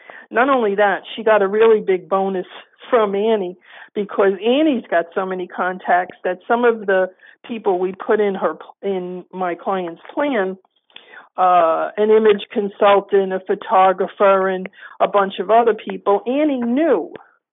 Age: 50-69